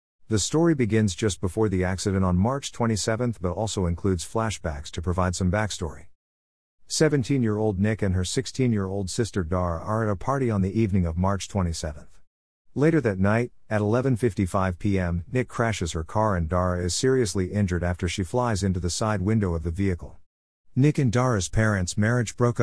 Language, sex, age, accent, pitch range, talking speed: English, male, 50-69, American, 90-110 Hz, 175 wpm